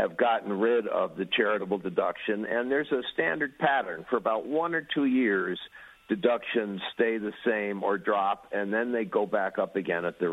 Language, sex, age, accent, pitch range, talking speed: English, male, 50-69, American, 100-130 Hz, 190 wpm